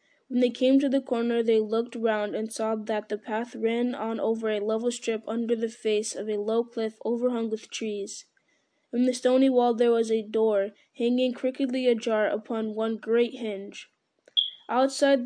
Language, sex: English, female